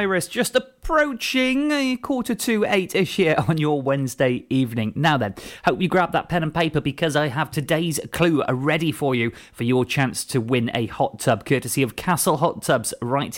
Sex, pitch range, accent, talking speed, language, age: male, 120-165 Hz, British, 190 wpm, English, 30-49